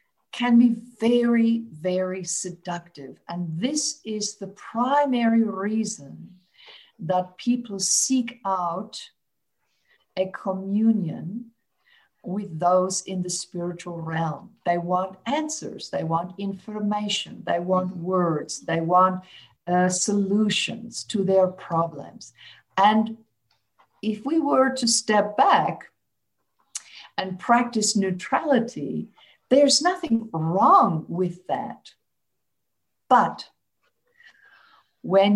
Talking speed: 95 wpm